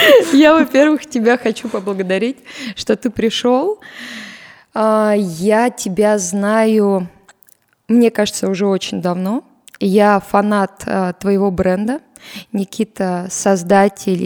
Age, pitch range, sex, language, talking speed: 20-39, 195-235 Hz, female, Russian, 95 wpm